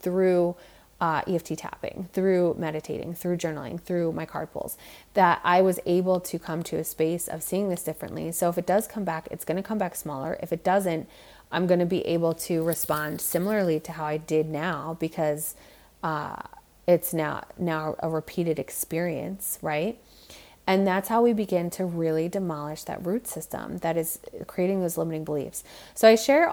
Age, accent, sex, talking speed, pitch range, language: 30-49, American, female, 180 wpm, 160-195 Hz, English